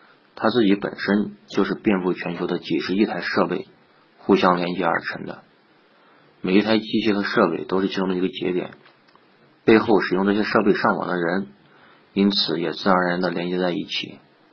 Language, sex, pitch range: Chinese, male, 90-105 Hz